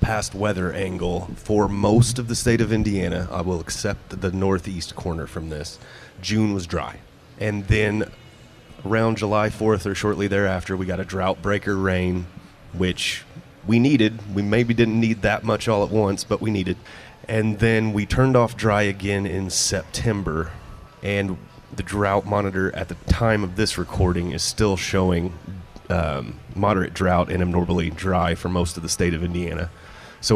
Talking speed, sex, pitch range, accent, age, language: 170 wpm, male, 90-105 Hz, American, 30-49, English